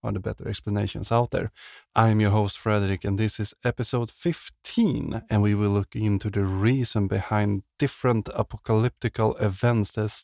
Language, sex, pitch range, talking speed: English, male, 100-120 Hz, 150 wpm